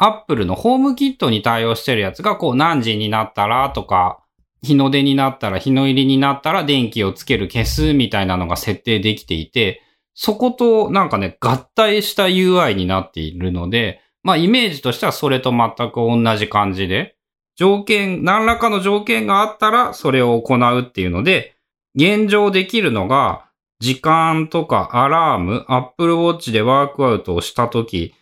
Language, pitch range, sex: Japanese, 110-170 Hz, male